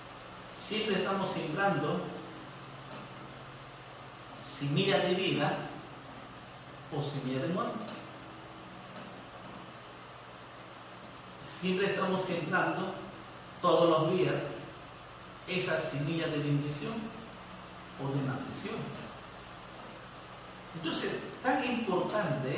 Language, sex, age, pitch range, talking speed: Spanish, male, 50-69, 130-175 Hz, 70 wpm